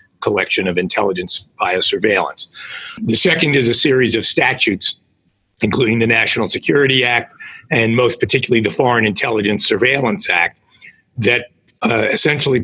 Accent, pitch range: American, 110-135 Hz